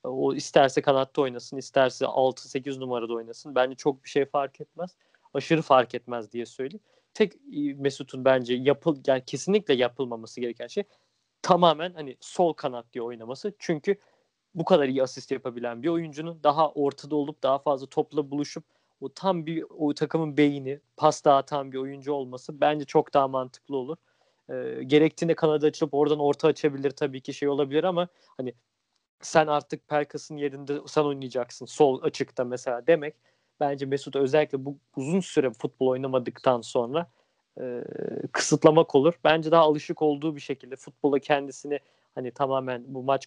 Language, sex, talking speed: Turkish, male, 155 wpm